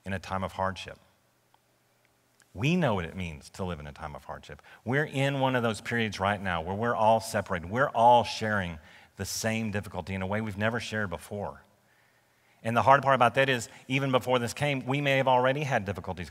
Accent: American